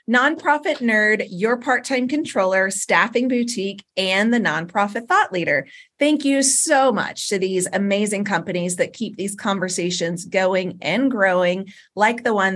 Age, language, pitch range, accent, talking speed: 30-49, English, 190-260 Hz, American, 145 wpm